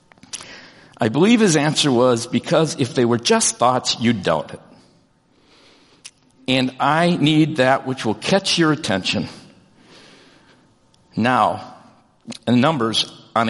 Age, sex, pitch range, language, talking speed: 50-69, male, 125-160 Hz, English, 120 wpm